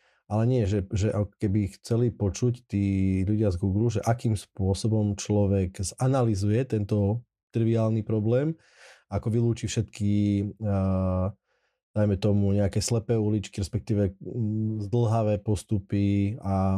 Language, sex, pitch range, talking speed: Slovak, male, 100-115 Hz, 110 wpm